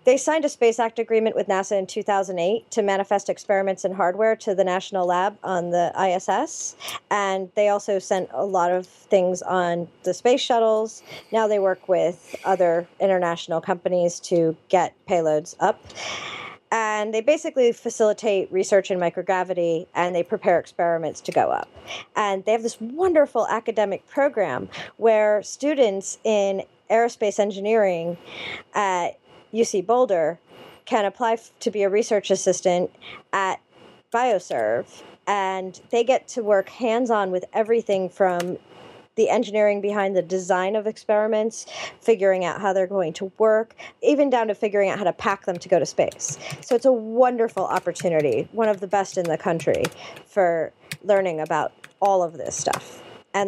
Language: English